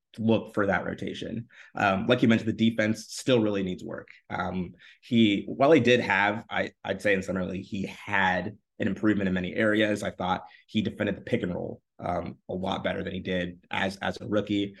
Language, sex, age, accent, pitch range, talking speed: English, male, 30-49, American, 95-110 Hz, 205 wpm